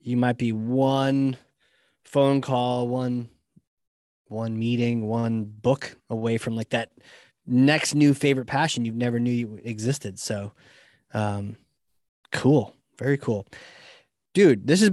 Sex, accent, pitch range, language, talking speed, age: male, American, 115-140 Hz, English, 130 wpm, 20-39